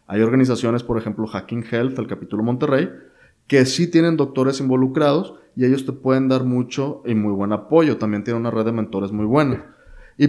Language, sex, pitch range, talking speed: Spanish, male, 110-135 Hz, 190 wpm